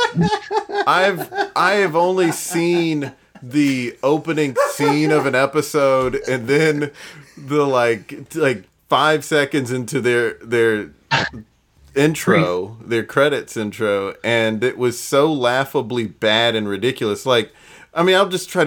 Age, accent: 30-49, American